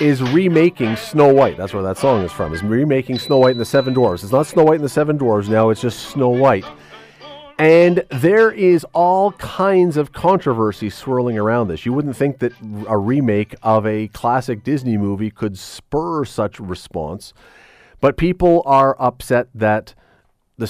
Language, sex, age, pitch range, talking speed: English, male, 40-59, 105-140 Hz, 180 wpm